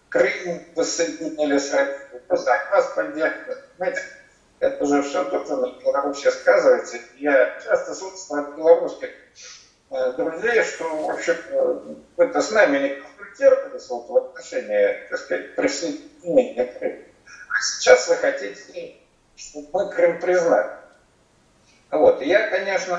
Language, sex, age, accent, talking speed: Russian, male, 50-69, native, 125 wpm